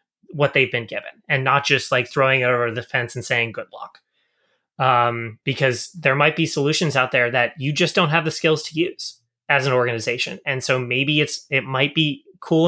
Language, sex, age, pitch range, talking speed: English, male, 20-39, 125-155 Hz, 215 wpm